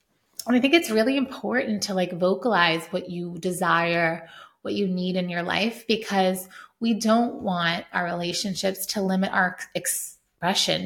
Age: 20-39